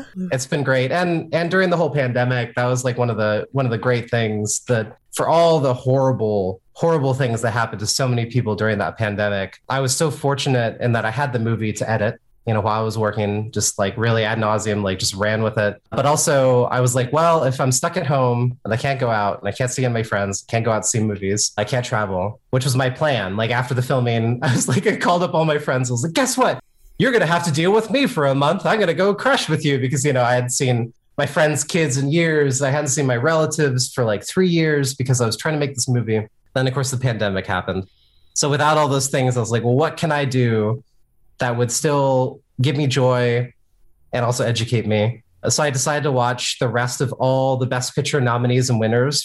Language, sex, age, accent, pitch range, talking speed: English, male, 30-49, American, 115-150 Hz, 255 wpm